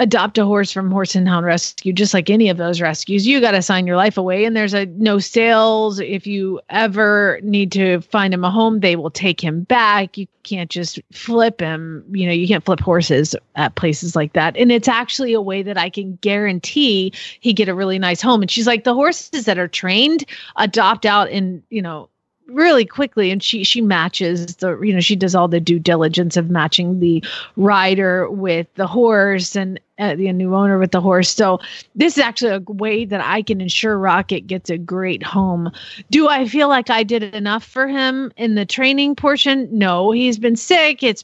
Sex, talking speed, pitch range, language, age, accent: female, 210 wpm, 180-230 Hz, English, 30-49, American